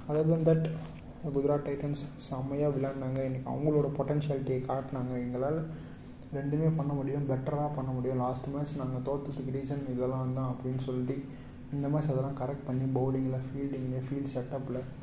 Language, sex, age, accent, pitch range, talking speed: Tamil, male, 20-39, native, 130-145 Hz, 140 wpm